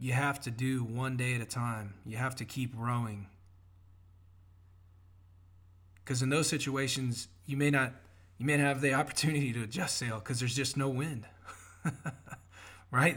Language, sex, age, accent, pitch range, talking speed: English, male, 20-39, American, 90-125 Hz, 165 wpm